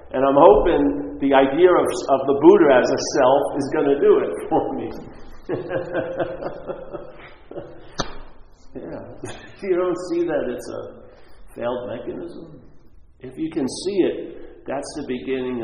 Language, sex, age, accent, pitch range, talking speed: English, male, 50-69, American, 115-180 Hz, 140 wpm